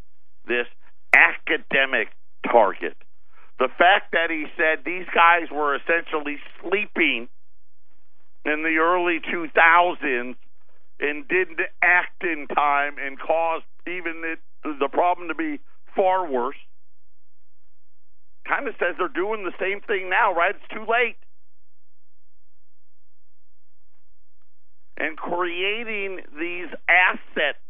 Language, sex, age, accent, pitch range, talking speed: English, male, 50-69, American, 155-210 Hz, 105 wpm